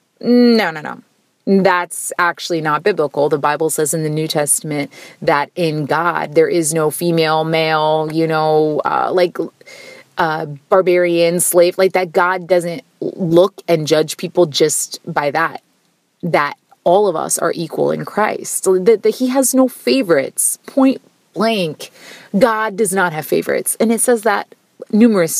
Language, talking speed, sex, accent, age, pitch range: English, 155 wpm, female, American, 30-49, 170-245 Hz